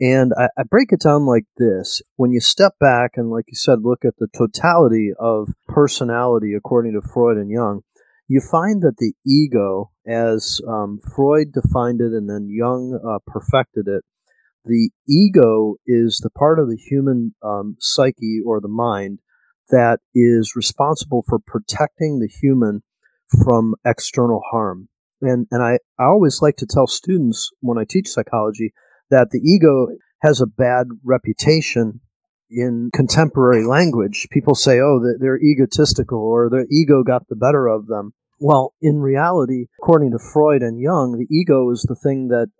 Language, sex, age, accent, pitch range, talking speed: English, male, 30-49, American, 115-135 Hz, 160 wpm